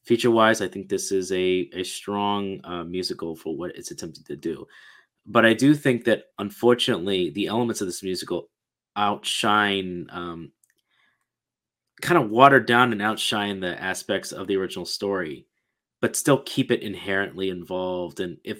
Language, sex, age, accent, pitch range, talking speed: English, male, 30-49, American, 90-115 Hz, 160 wpm